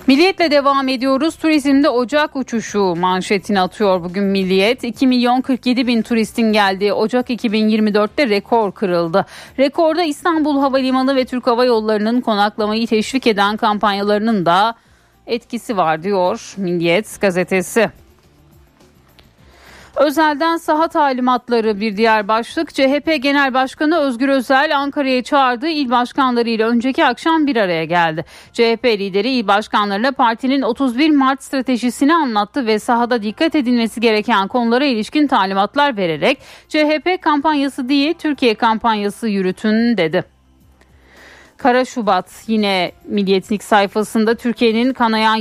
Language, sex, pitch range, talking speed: Turkish, female, 200-270 Hz, 120 wpm